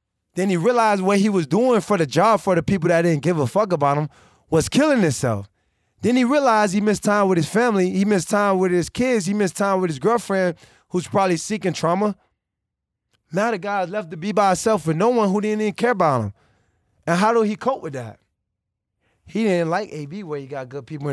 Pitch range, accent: 120-190 Hz, American